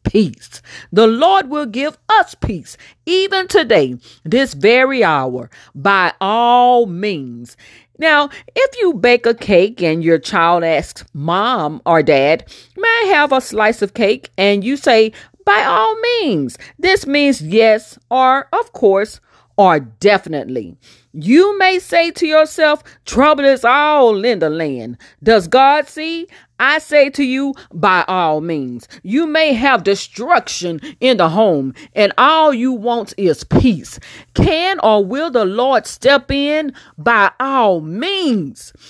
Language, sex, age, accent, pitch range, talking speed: English, female, 40-59, American, 185-300 Hz, 145 wpm